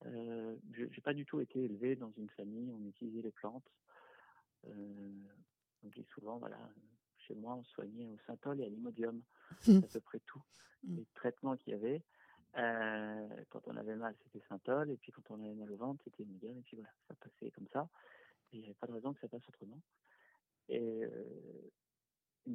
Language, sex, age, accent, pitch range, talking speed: French, male, 40-59, French, 110-130 Hz, 200 wpm